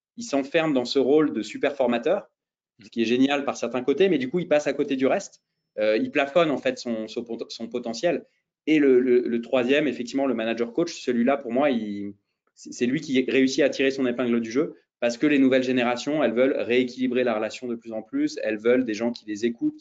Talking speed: 235 wpm